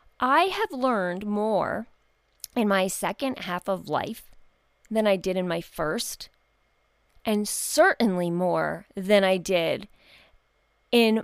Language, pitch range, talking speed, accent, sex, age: English, 185-275 Hz, 125 wpm, American, female, 30-49